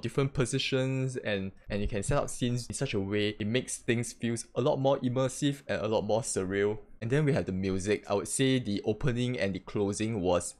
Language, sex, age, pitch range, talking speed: English, male, 20-39, 95-115 Hz, 230 wpm